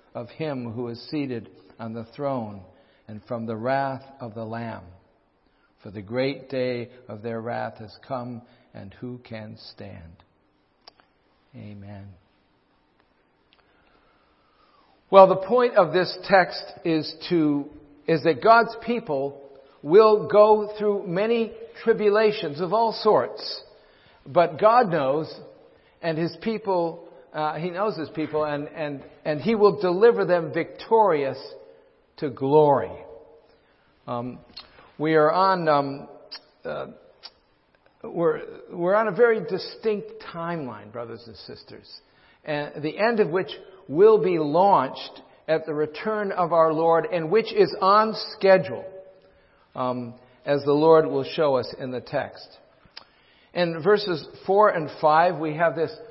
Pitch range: 125-210 Hz